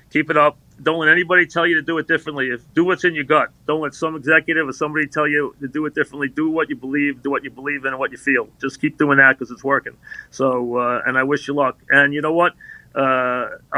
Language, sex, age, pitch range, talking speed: English, male, 40-59, 145-180 Hz, 265 wpm